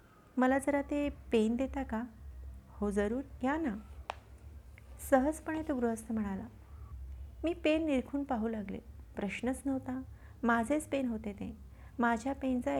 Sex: female